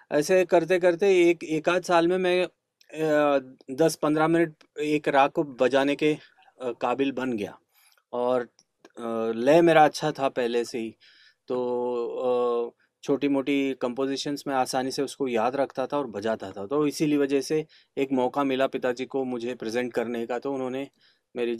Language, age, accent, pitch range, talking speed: Hindi, 30-49, native, 120-150 Hz, 160 wpm